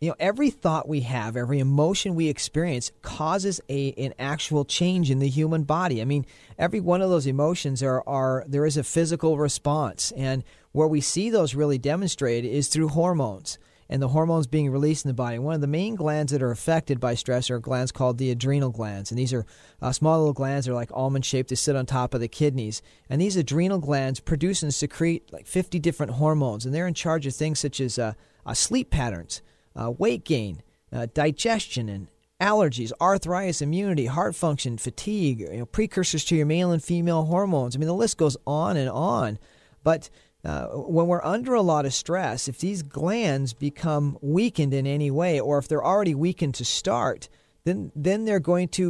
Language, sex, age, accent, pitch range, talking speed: English, male, 40-59, American, 130-170 Hz, 205 wpm